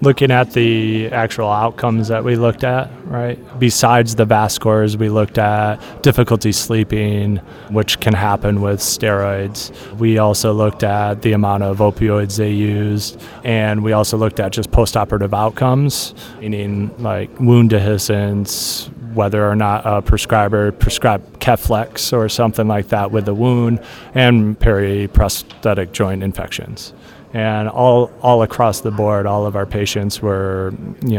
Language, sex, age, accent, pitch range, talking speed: English, male, 30-49, American, 100-115 Hz, 145 wpm